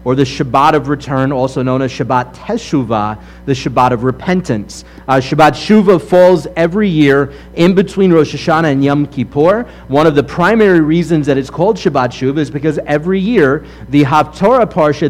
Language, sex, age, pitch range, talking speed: English, male, 30-49, 130-165 Hz, 175 wpm